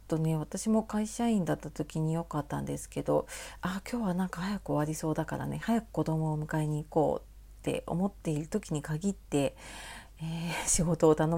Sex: female